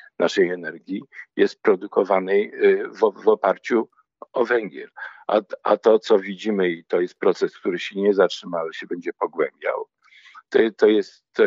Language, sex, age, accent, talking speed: Polish, male, 50-69, native, 140 wpm